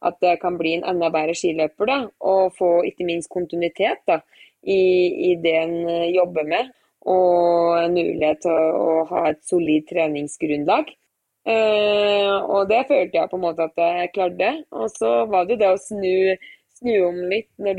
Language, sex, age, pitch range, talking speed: Swedish, female, 20-39, 170-195 Hz, 155 wpm